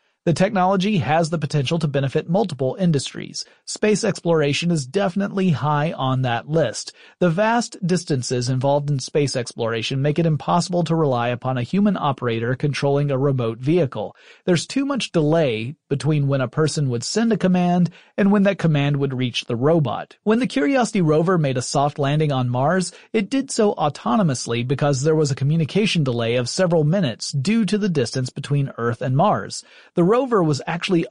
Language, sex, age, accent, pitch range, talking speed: English, male, 40-59, American, 140-190 Hz, 175 wpm